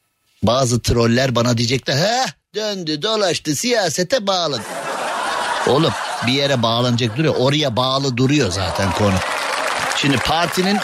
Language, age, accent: Turkish, 50-69, native